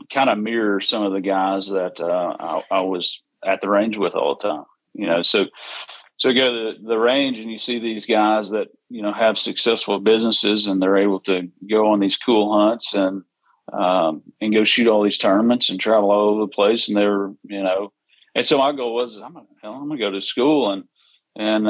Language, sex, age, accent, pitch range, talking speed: English, male, 40-59, American, 100-120 Hz, 225 wpm